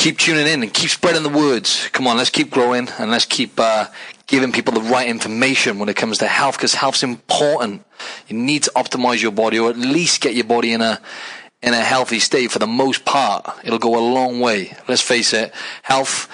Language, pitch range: English, 110-140 Hz